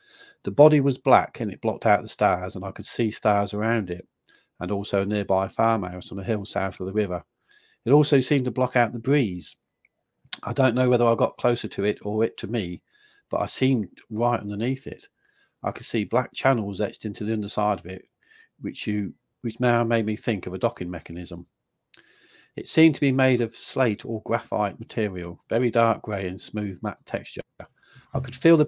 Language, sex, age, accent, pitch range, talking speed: English, male, 50-69, British, 100-125 Hz, 205 wpm